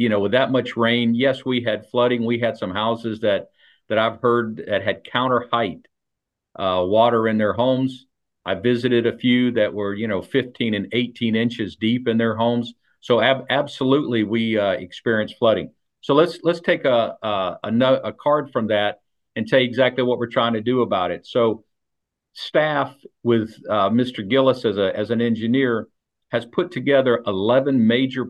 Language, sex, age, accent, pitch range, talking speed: English, male, 50-69, American, 110-125 Hz, 185 wpm